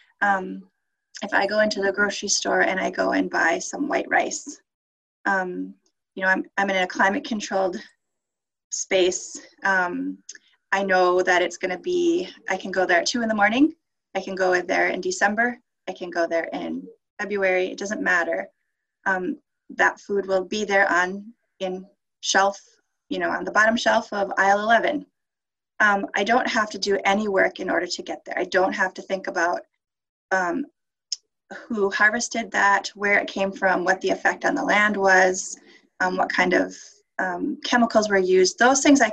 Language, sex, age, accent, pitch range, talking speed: English, female, 20-39, American, 190-245 Hz, 185 wpm